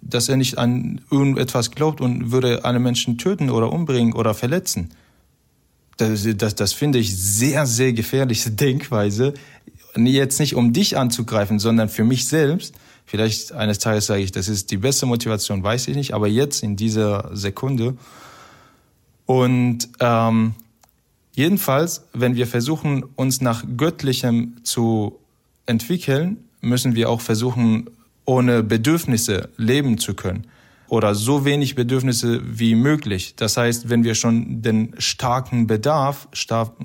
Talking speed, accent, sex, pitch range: 140 wpm, German, male, 110-135 Hz